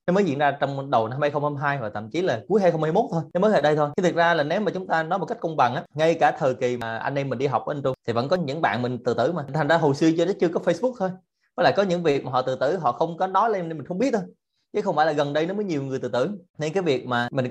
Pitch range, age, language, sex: 125-170 Hz, 20-39, Vietnamese, male